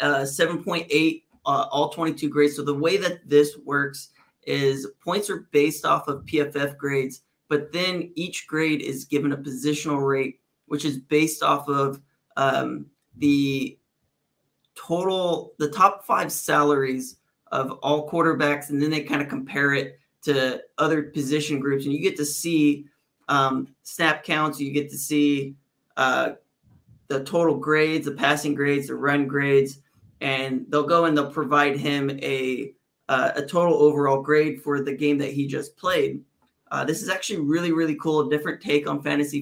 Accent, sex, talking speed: American, male, 165 wpm